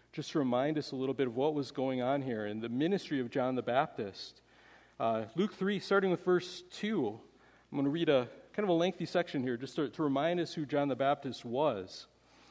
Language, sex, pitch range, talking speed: English, male, 135-185 Hz, 230 wpm